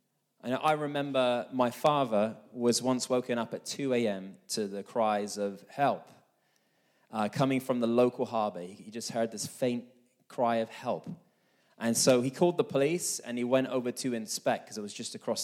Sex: male